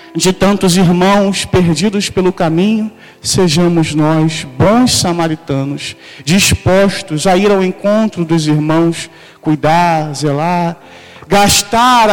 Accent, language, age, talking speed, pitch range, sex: Brazilian, Portuguese, 40-59, 100 wpm, 155-190 Hz, male